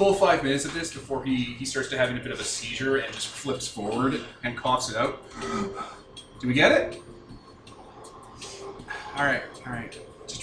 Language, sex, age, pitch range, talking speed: English, male, 30-49, 105-135 Hz, 180 wpm